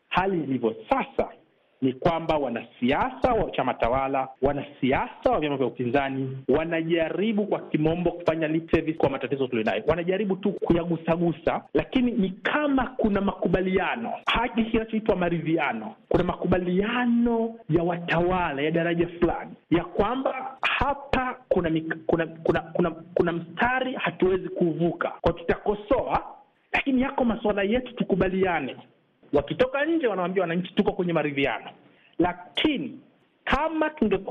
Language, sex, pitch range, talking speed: Swahili, male, 170-225 Hz, 120 wpm